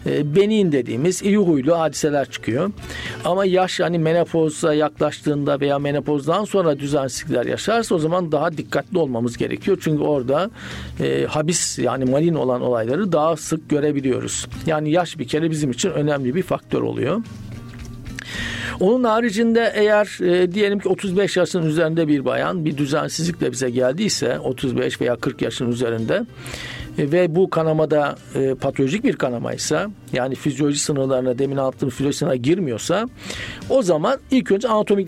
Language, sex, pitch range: Turkish, male, 135-175 Hz